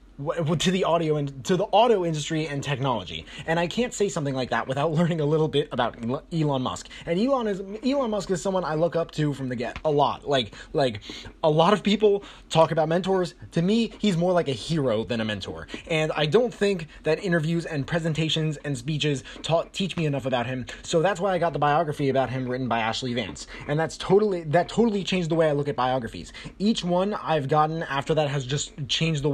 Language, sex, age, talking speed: English, male, 20-39, 225 wpm